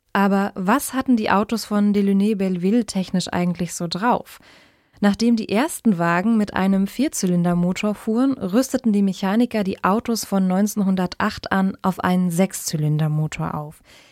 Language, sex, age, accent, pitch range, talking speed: German, female, 20-39, German, 185-220 Hz, 135 wpm